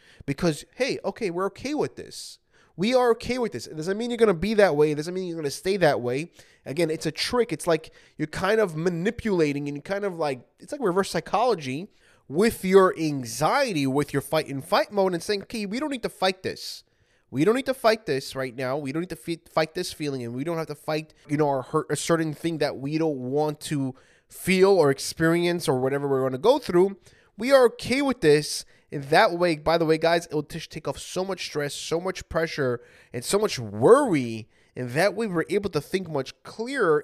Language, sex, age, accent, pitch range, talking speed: English, male, 20-39, American, 140-190 Hz, 235 wpm